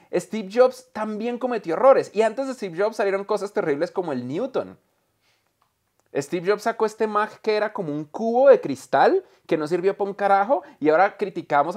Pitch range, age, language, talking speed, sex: 155-245 Hz, 30-49, Spanish, 190 wpm, male